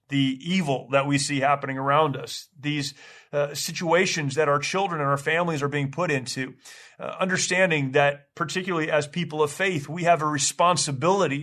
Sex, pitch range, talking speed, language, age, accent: male, 135-155 Hz, 175 wpm, English, 30-49, American